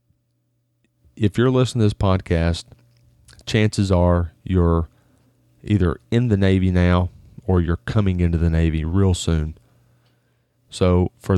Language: English